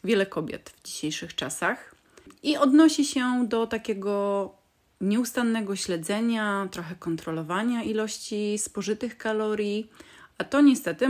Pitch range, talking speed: 175-230 Hz, 110 wpm